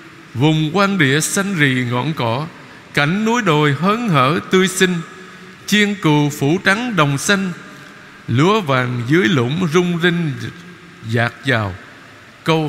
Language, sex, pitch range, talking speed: Vietnamese, male, 135-185 Hz, 135 wpm